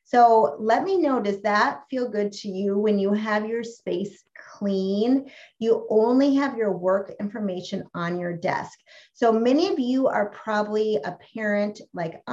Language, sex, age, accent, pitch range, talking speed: English, female, 30-49, American, 195-245 Hz, 165 wpm